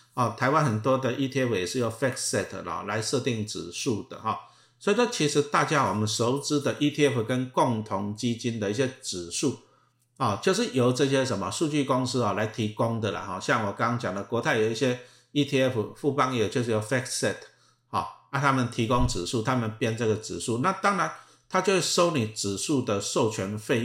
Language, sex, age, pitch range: Chinese, male, 50-69, 110-140 Hz